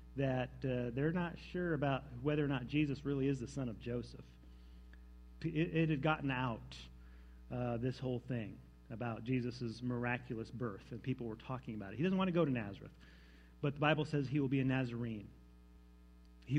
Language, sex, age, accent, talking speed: English, male, 40-59, American, 190 wpm